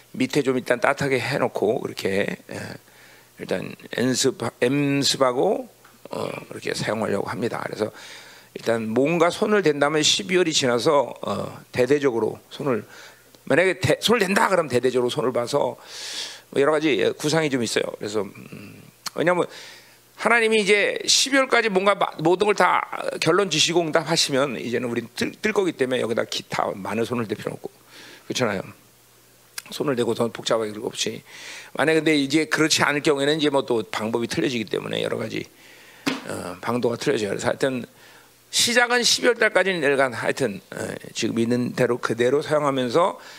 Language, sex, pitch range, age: Korean, male, 125-175 Hz, 40-59